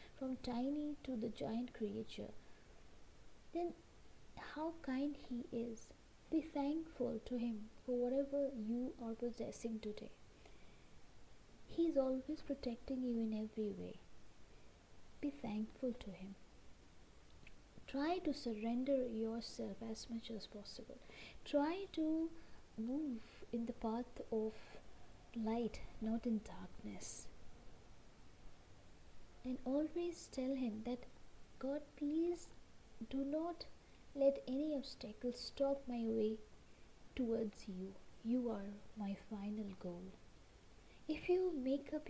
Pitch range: 220-270 Hz